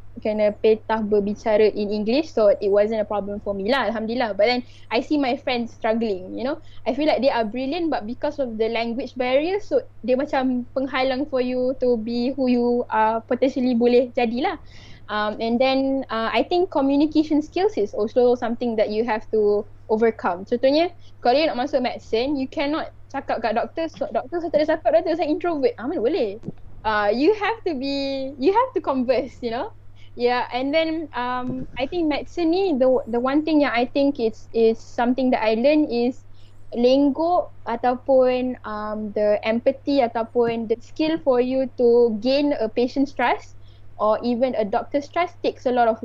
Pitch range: 220-275 Hz